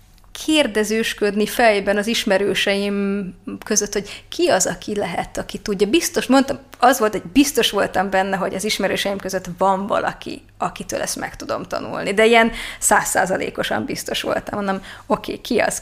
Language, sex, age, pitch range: Hungarian, female, 20-39, 195-225 Hz